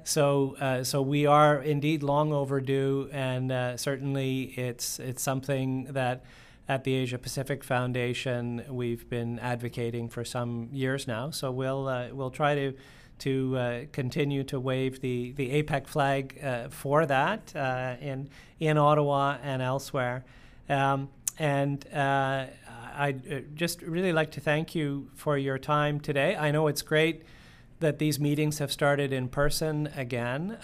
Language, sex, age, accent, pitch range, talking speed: English, male, 40-59, American, 130-150 Hz, 150 wpm